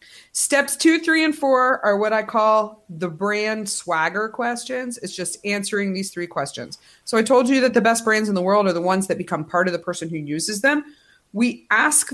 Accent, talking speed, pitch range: American, 220 wpm, 185-240 Hz